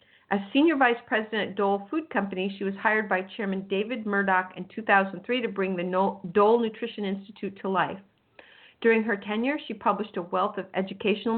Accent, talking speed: American, 180 wpm